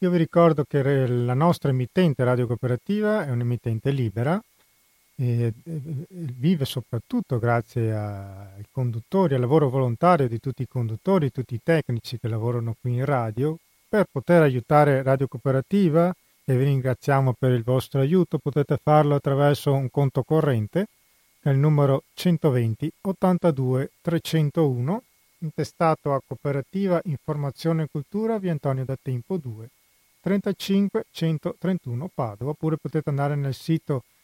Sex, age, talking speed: male, 40-59, 130 wpm